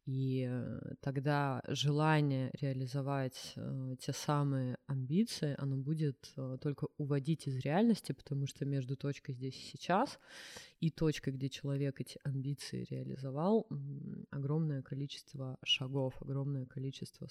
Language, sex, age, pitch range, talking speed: Russian, female, 20-39, 135-155 Hz, 110 wpm